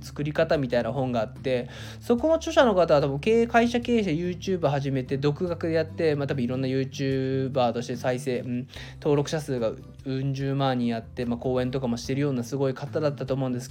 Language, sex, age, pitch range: Japanese, male, 20-39, 130-215 Hz